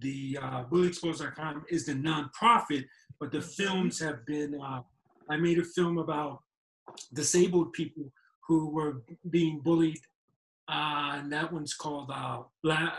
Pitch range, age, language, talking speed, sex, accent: 140-165 Hz, 50-69, English, 140 wpm, male, American